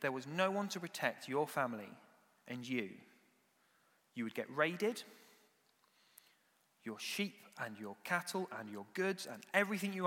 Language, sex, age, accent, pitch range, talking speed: English, male, 30-49, British, 125-190 Hz, 150 wpm